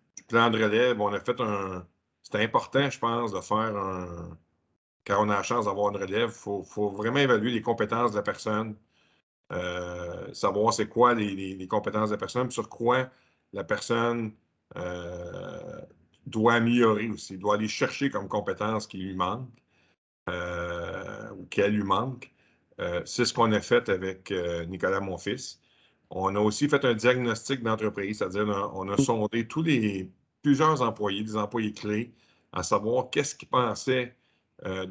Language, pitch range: French, 95-115 Hz